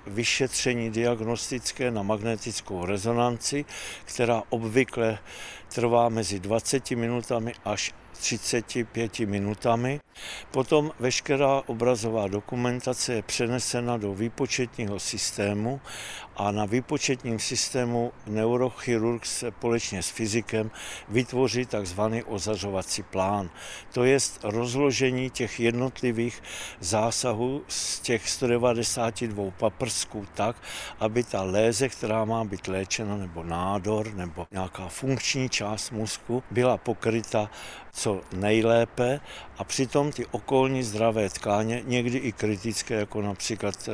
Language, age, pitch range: Czech, 60-79, 105-125 Hz